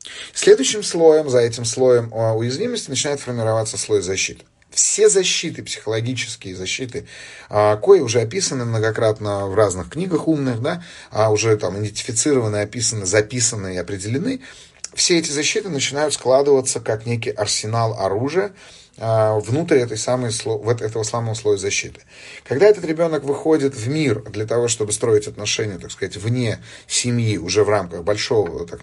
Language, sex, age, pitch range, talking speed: Russian, male, 30-49, 110-140 Hz, 140 wpm